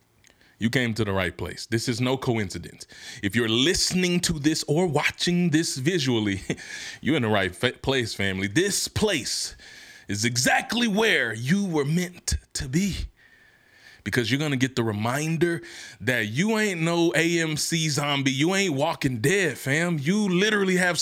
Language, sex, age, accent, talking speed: English, male, 30-49, American, 160 wpm